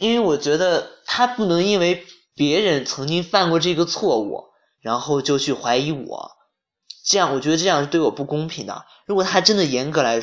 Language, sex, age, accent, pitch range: Chinese, male, 20-39, native, 130-180 Hz